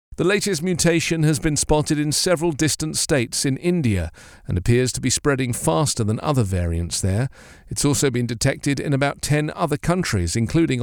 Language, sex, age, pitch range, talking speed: English, male, 50-69, 110-155 Hz, 175 wpm